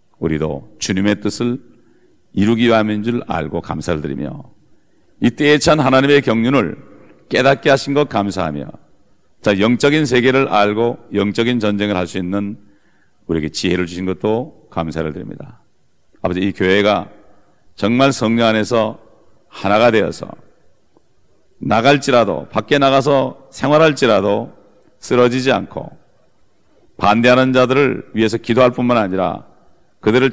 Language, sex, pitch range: English, male, 100-135 Hz